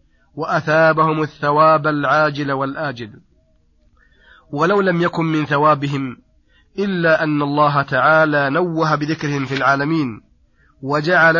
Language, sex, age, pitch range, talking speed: Arabic, male, 30-49, 140-155 Hz, 95 wpm